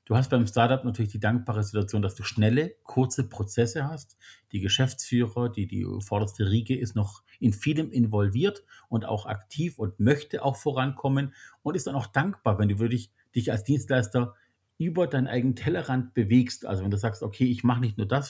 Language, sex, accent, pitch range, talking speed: German, male, German, 110-130 Hz, 190 wpm